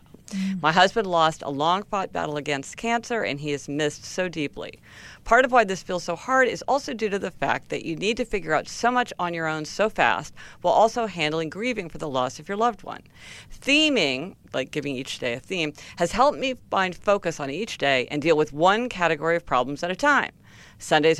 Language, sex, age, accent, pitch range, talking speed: English, female, 50-69, American, 150-220 Hz, 220 wpm